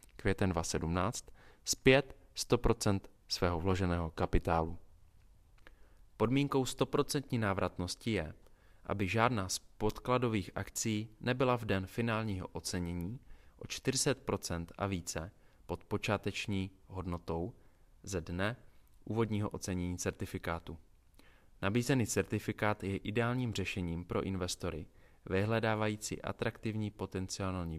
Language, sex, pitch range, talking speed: Czech, male, 90-110 Hz, 95 wpm